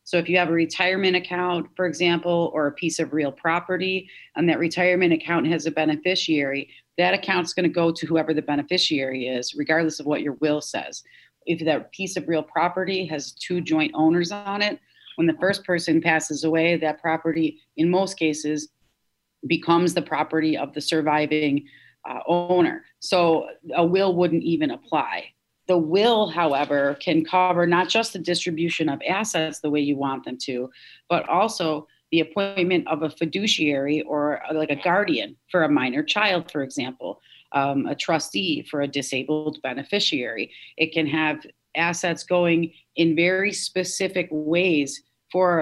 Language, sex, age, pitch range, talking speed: English, female, 30-49, 155-180 Hz, 165 wpm